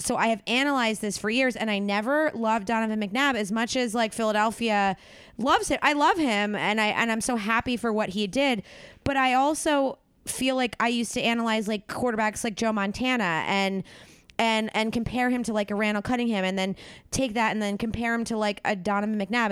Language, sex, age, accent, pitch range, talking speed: English, female, 20-39, American, 200-240 Hz, 215 wpm